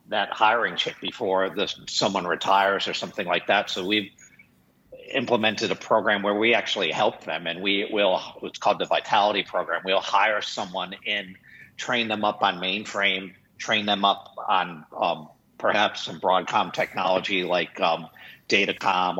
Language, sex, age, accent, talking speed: English, male, 50-69, American, 155 wpm